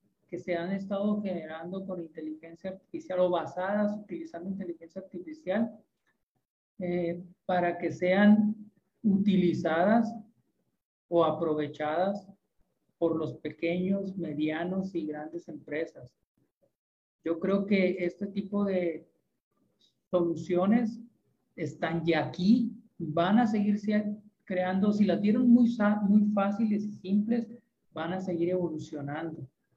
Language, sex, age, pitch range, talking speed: Spanish, male, 40-59, 170-205 Hz, 105 wpm